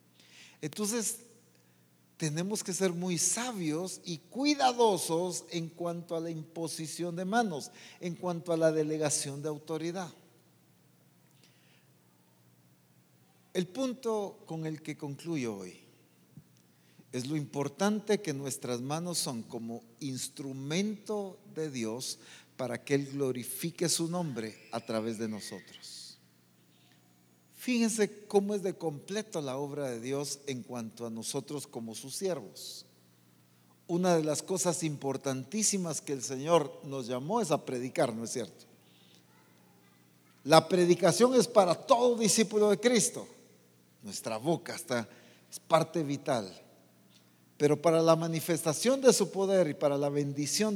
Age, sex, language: 50-69, male, English